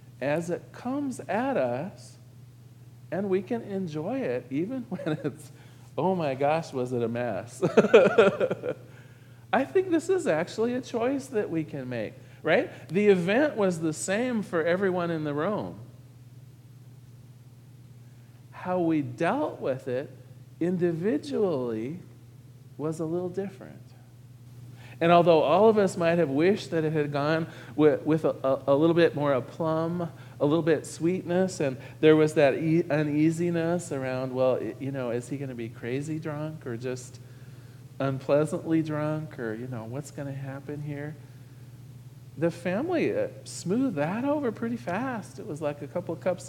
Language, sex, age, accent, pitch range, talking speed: English, male, 40-59, American, 125-170 Hz, 155 wpm